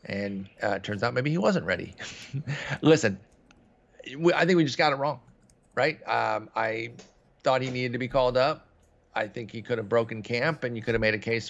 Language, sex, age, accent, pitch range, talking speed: English, male, 40-59, American, 110-140 Hz, 220 wpm